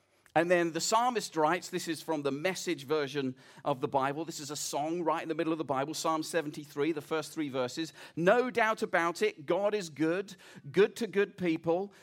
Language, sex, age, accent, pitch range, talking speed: English, male, 40-59, British, 160-205 Hz, 210 wpm